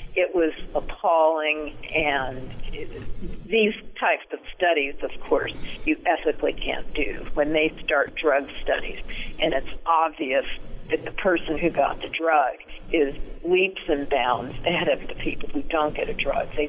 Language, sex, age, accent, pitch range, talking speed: English, female, 50-69, American, 145-195 Hz, 155 wpm